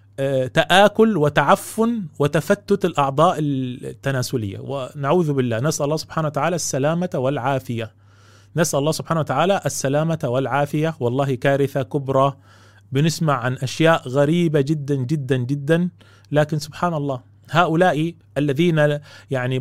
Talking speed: 105 wpm